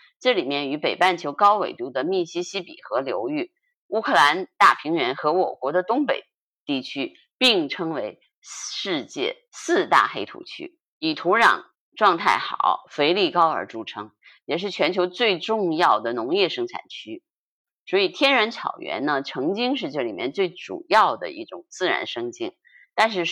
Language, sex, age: Chinese, female, 30-49